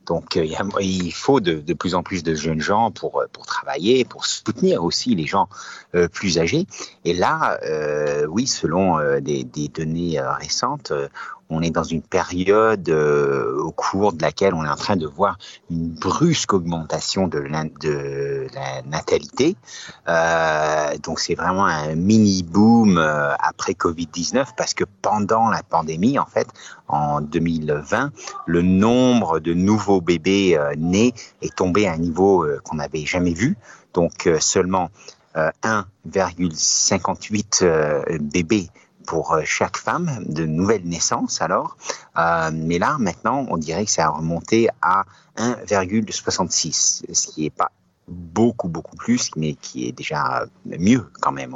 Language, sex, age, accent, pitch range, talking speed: French, male, 50-69, French, 80-95 Hz, 155 wpm